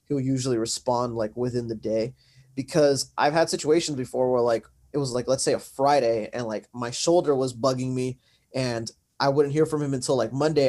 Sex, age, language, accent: male, 20-39, English, American